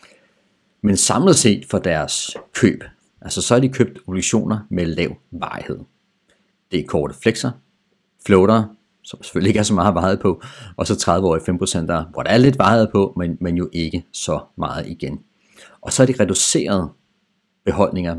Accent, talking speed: native, 180 wpm